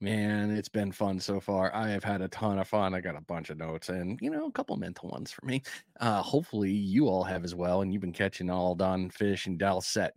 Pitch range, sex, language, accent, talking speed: 95-110 Hz, male, English, American, 265 wpm